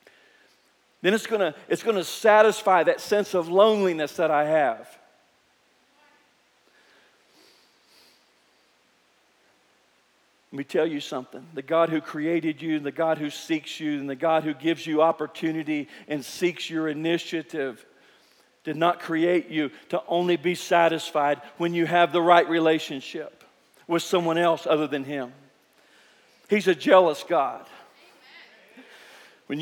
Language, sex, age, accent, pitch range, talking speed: English, male, 50-69, American, 160-210 Hz, 130 wpm